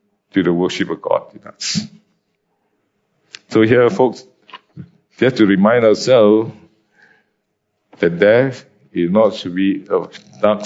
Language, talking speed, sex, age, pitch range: English, 125 wpm, male, 50-69, 110-140 Hz